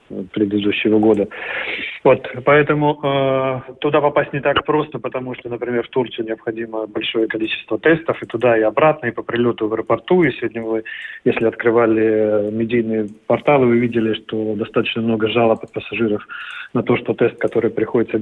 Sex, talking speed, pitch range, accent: male, 160 wpm, 115-135 Hz, native